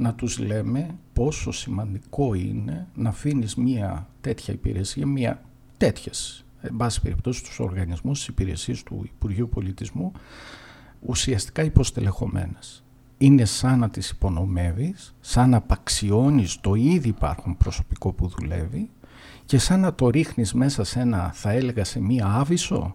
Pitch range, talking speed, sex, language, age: 100-135 Hz, 135 wpm, male, Greek, 50-69